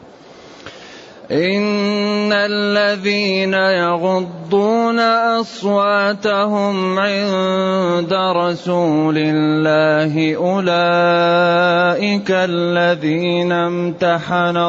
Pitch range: 175-210 Hz